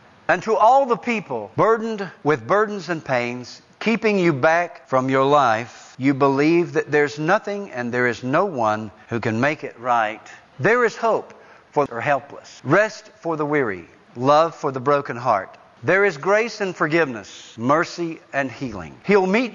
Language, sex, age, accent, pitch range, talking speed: English, male, 60-79, American, 130-185 Hz, 170 wpm